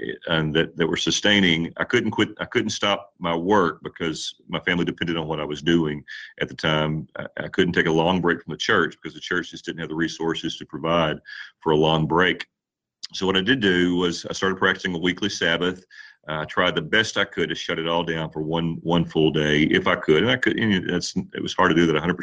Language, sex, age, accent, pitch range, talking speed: English, male, 40-59, American, 80-95 Hz, 250 wpm